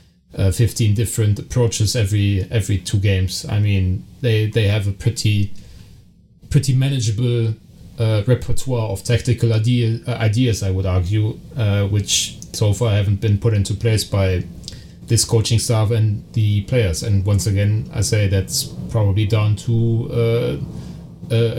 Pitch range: 105-125 Hz